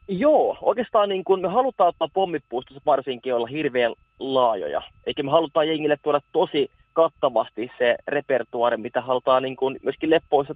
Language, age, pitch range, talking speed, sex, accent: Finnish, 20-39, 125-160 Hz, 155 wpm, male, native